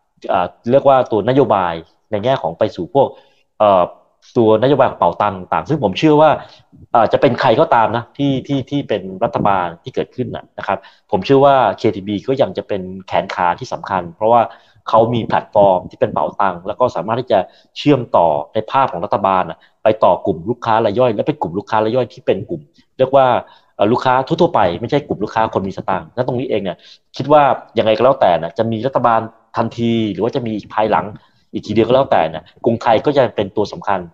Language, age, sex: Thai, 30-49, male